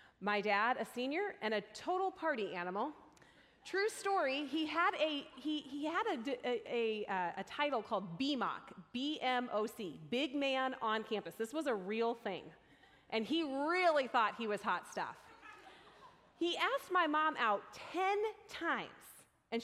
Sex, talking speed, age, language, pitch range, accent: female, 155 wpm, 30-49, English, 210-290 Hz, American